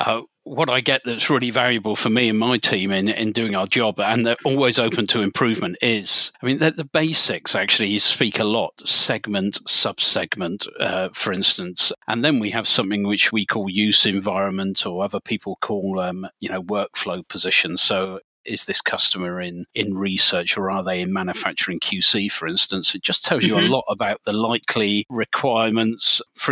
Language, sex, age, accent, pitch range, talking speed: English, male, 40-59, British, 100-115 Hz, 190 wpm